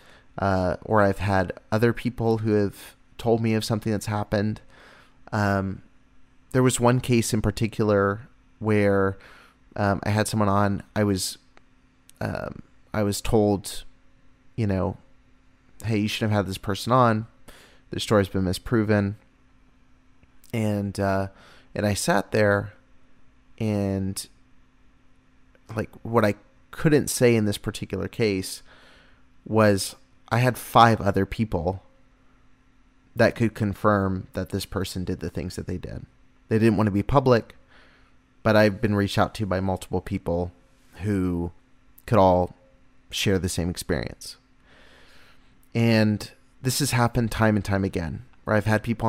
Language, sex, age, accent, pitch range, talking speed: English, male, 30-49, American, 95-110 Hz, 140 wpm